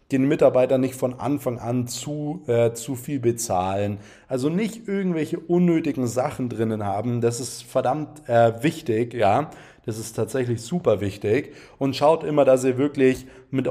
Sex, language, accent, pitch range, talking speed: male, German, German, 115-135 Hz, 160 wpm